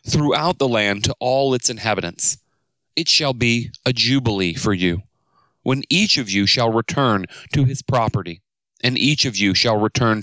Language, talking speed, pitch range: English, 170 wpm, 105-130 Hz